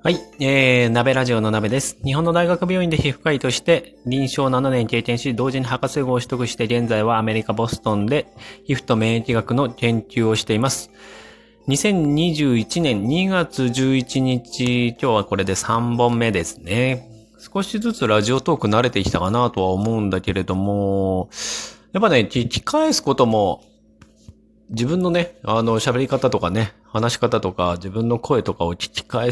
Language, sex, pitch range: Japanese, male, 110-155 Hz